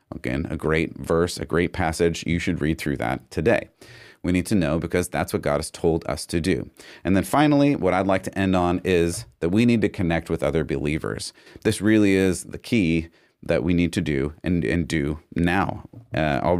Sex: male